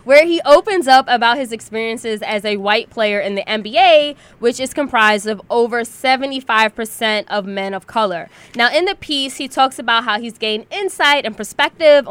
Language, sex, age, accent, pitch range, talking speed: English, female, 20-39, American, 220-290 Hz, 185 wpm